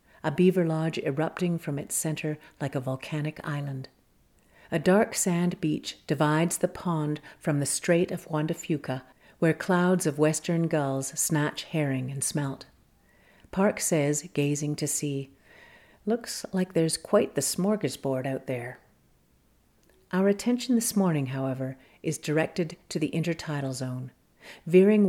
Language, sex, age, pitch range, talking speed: English, female, 50-69, 140-175 Hz, 140 wpm